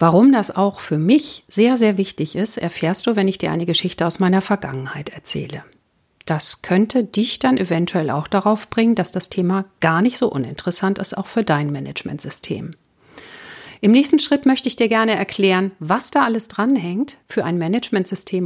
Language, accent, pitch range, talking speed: German, German, 175-245 Hz, 180 wpm